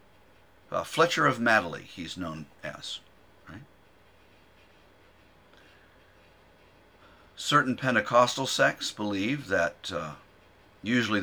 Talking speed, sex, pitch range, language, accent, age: 80 wpm, male, 90-120 Hz, English, American, 50-69